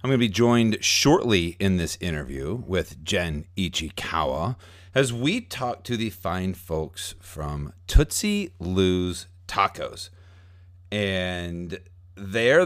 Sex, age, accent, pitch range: male, 40-59, American, 90-115 Hz